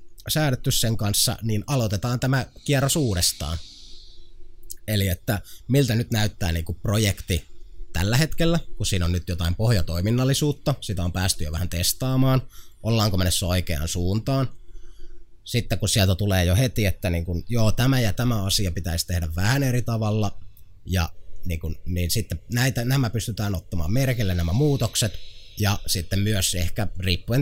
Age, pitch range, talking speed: 20-39, 90-110 Hz, 150 wpm